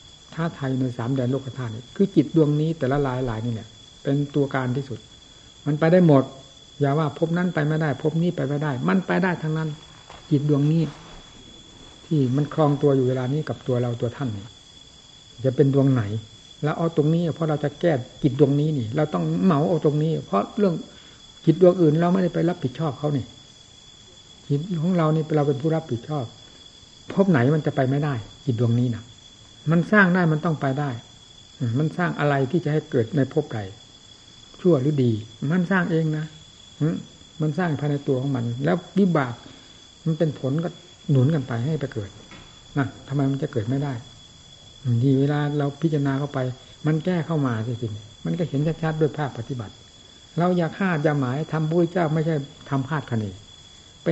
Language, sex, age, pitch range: Thai, male, 60-79, 125-160 Hz